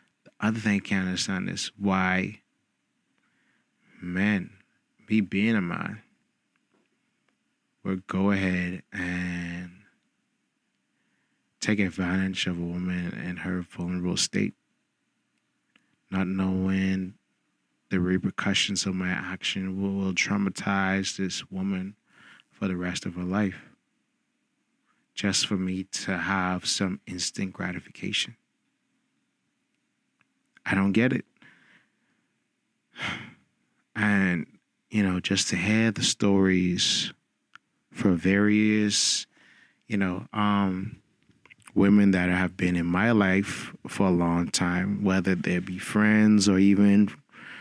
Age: 20-39